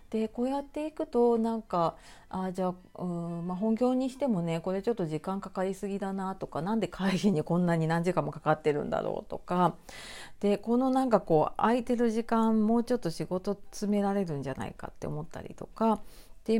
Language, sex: Japanese, female